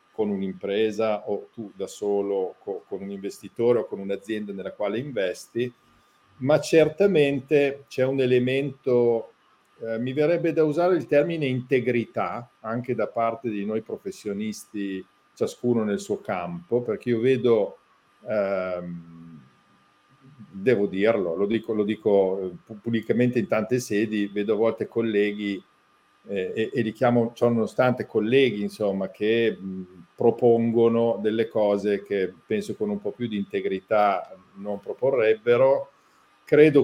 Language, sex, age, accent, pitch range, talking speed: Italian, male, 50-69, native, 100-130 Hz, 125 wpm